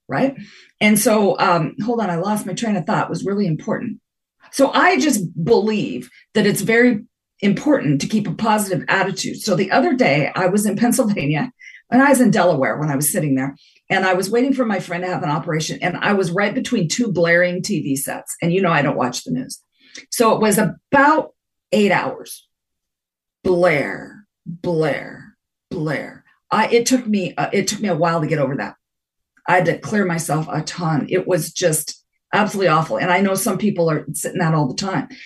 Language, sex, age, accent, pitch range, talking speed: English, female, 40-59, American, 160-215 Hz, 205 wpm